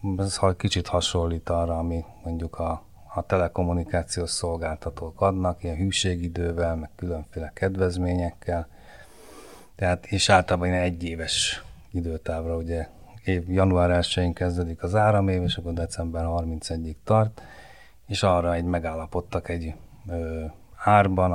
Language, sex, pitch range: Hungarian, male, 85-95 Hz